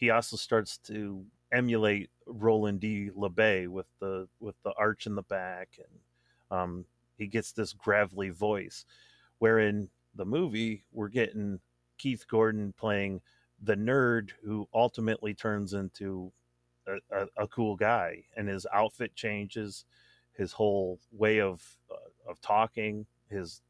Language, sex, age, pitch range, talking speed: English, male, 30-49, 95-110 Hz, 140 wpm